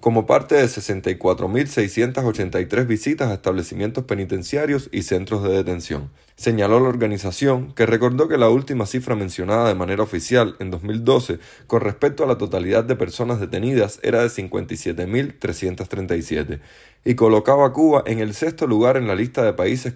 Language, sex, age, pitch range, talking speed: Spanish, male, 30-49, 95-125 Hz, 155 wpm